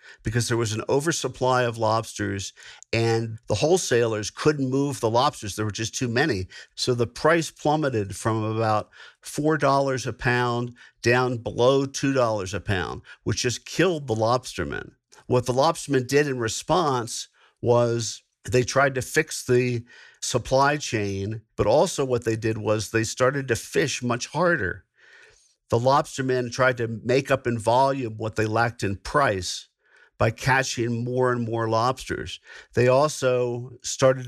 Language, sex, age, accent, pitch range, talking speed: English, male, 50-69, American, 110-135 Hz, 150 wpm